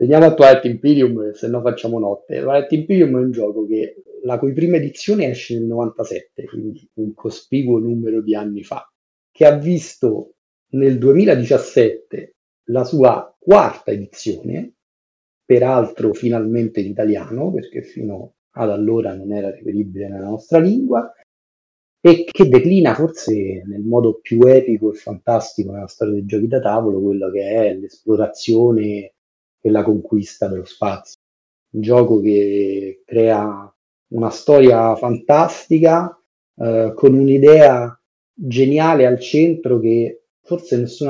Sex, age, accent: male, 30-49, native